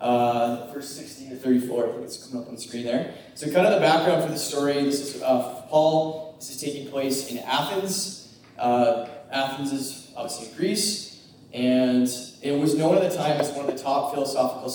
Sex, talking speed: male, 205 wpm